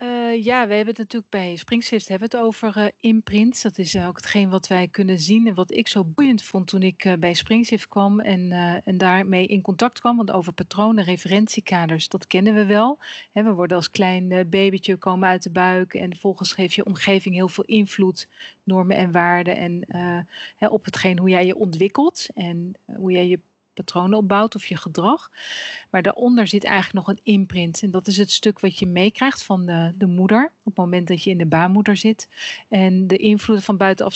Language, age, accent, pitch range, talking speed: Dutch, 40-59, Dutch, 185-215 Hz, 215 wpm